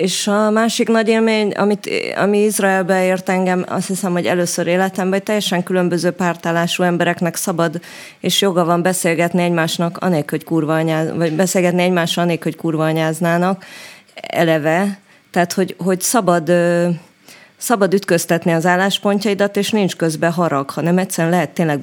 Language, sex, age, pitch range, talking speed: Hungarian, female, 20-39, 165-190 Hz, 145 wpm